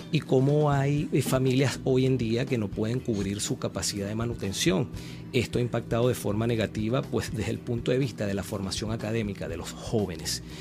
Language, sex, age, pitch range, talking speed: Spanish, male, 40-59, 100-130 Hz, 190 wpm